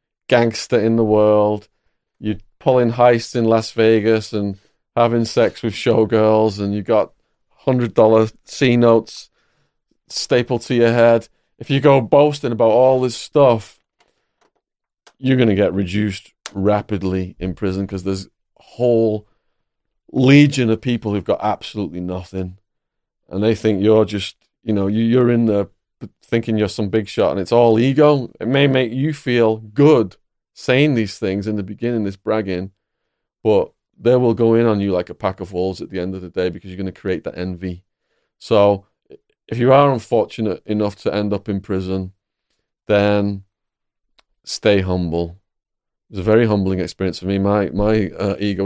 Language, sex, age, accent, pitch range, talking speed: English, male, 30-49, British, 95-115 Hz, 165 wpm